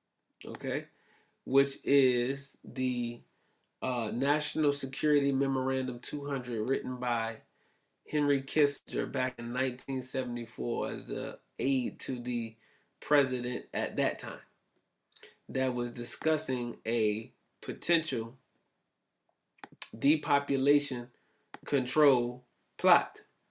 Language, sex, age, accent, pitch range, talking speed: English, male, 20-39, American, 125-145 Hz, 85 wpm